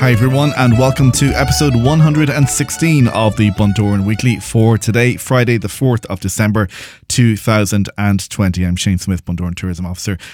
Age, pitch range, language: 20-39, 95-115 Hz, English